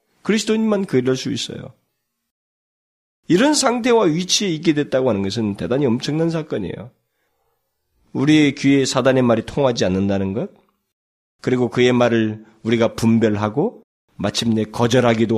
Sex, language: male, Korean